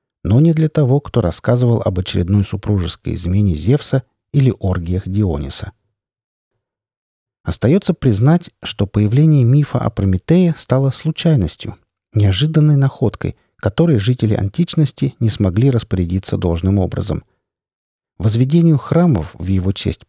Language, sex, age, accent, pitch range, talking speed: Russian, male, 50-69, native, 100-135 Hz, 115 wpm